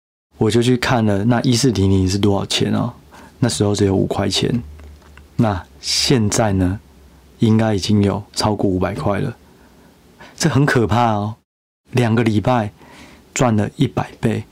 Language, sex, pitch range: Chinese, male, 100-130 Hz